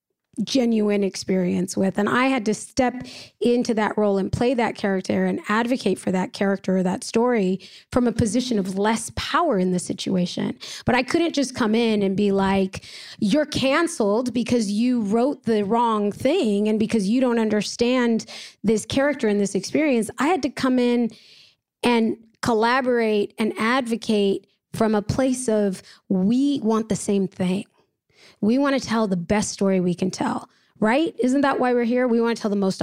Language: English